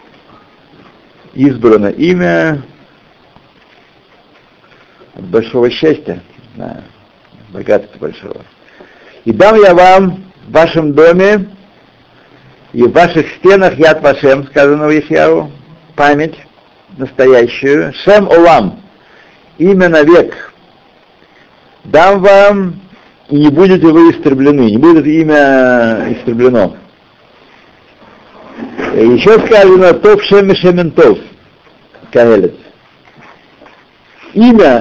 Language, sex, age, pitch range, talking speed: Russian, male, 60-79, 120-175 Hz, 80 wpm